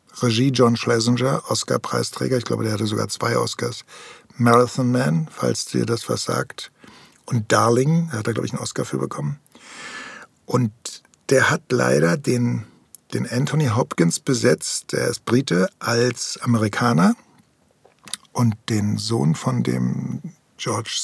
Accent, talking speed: German, 140 wpm